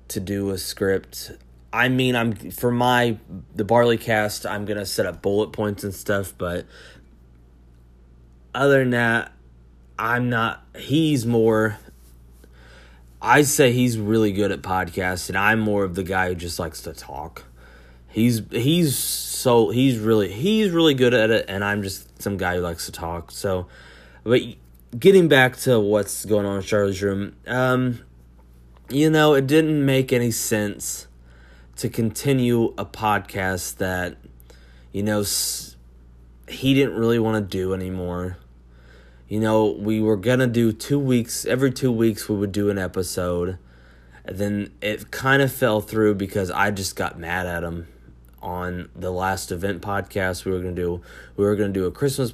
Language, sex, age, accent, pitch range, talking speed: English, male, 30-49, American, 85-115 Hz, 165 wpm